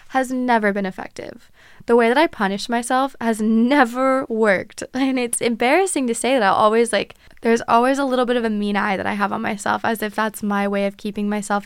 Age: 20-39